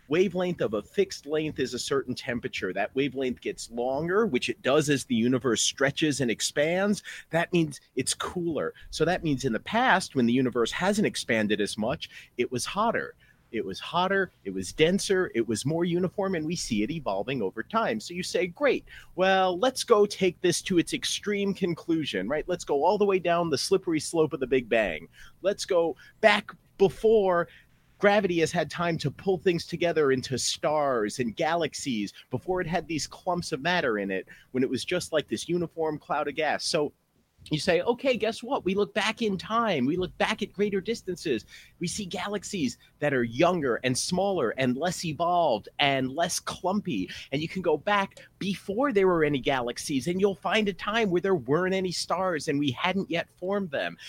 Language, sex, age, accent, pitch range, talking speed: English, male, 40-59, American, 150-205 Hz, 195 wpm